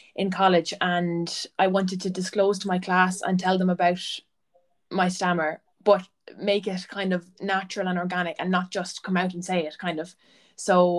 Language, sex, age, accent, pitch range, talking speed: English, female, 20-39, Irish, 175-190 Hz, 190 wpm